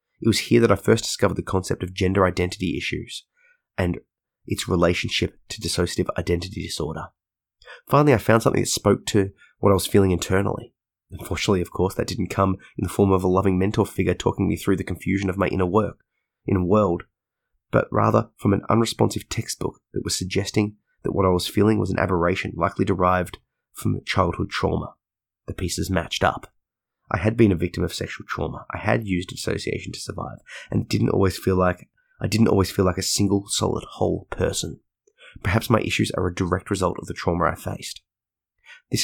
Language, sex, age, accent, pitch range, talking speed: English, male, 30-49, Australian, 90-110 Hz, 195 wpm